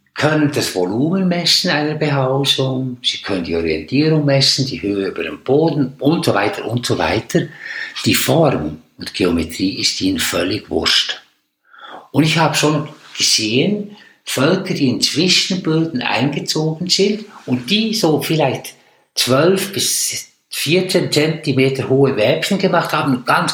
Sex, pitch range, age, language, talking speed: male, 130-170 Hz, 60-79, German, 140 wpm